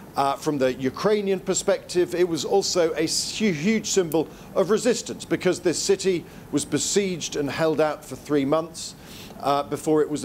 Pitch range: 145-180 Hz